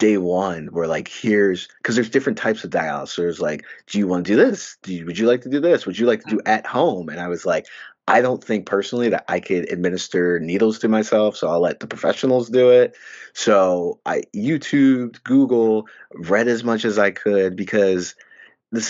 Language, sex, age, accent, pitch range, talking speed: English, male, 20-39, American, 90-115 Hz, 215 wpm